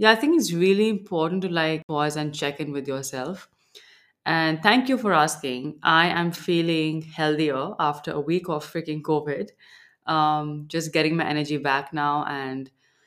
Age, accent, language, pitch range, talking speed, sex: 20-39, Indian, English, 150-185 Hz, 170 wpm, female